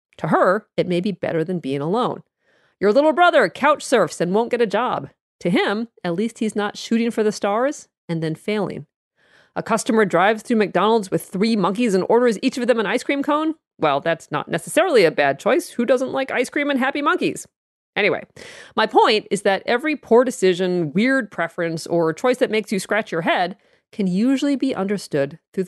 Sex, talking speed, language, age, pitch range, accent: female, 205 wpm, English, 40-59, 175-245 Hz, American